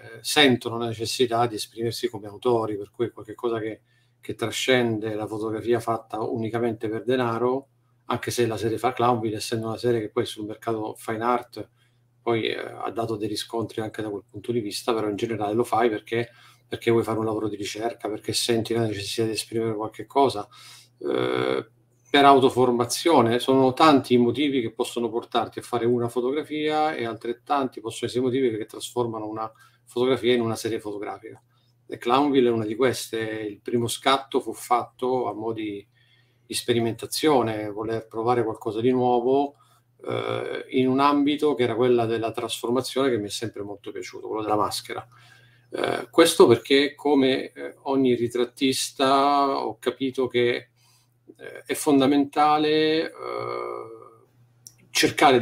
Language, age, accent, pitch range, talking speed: Italian, 40-59, native, 115-130 Hz, 160 wpm